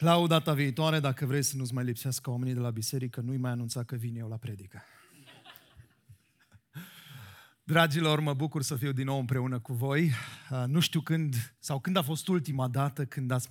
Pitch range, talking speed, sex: 130-180 Hz, 185 wpm, male